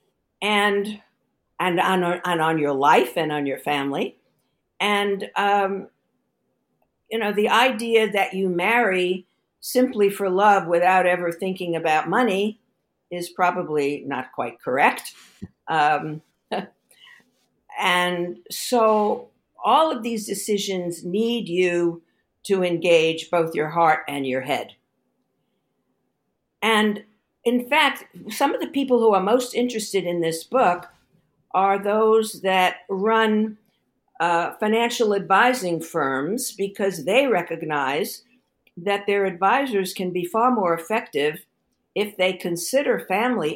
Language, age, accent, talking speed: English, 60-79, American, 120 wpm